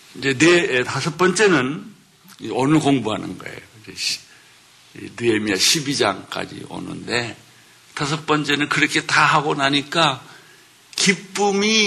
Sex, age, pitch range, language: male, 60-79, 120-165 Hz, Korean